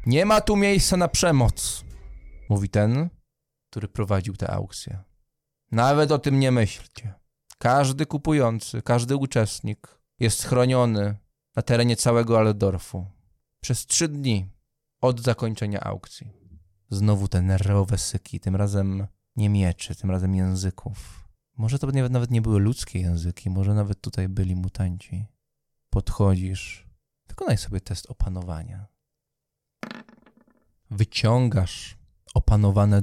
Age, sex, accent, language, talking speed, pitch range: 20-39, male, Polish, English, 115 wpm, 95-120 Hz